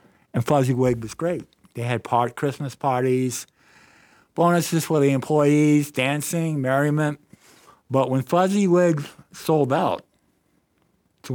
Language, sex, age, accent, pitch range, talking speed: English, male, 50-69, American, 120-150 Hz, 120 wpm